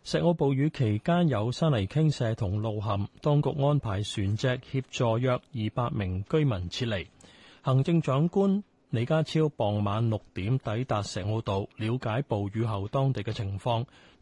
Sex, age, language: male, 30-49, Chinese